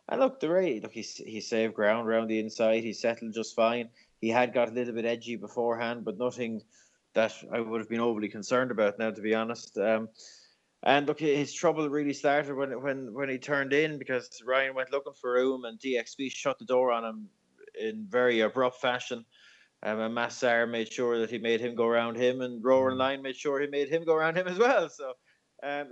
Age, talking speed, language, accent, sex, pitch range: 20-39, 220 wpm, English, Irish, male, 110-125 Hz